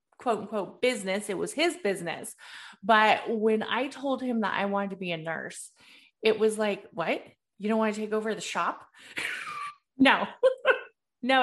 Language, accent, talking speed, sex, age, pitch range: English, American, 175 wpm, female, 30-49, 200-270 Hz